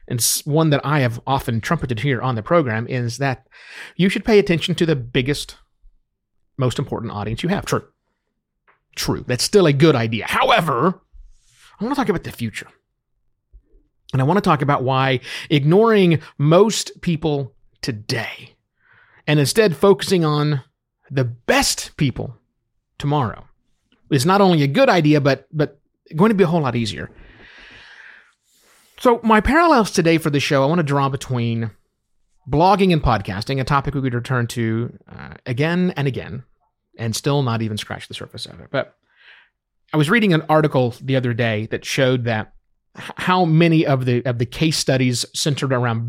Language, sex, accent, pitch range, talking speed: English, male, American, 120-160 Hz, 170 wpm